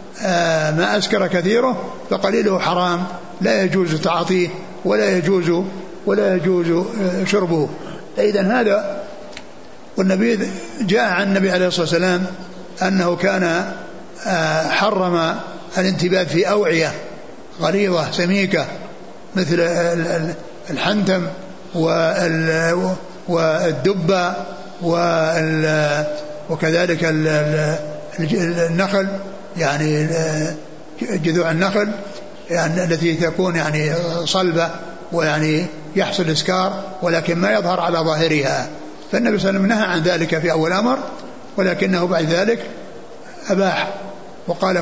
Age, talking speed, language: 60-79, 90 wpm, Arabic